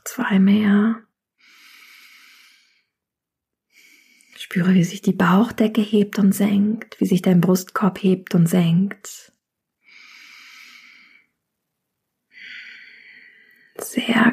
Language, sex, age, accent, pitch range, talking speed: German, female, 20-39, German, 185-255 Hz, 75 wpm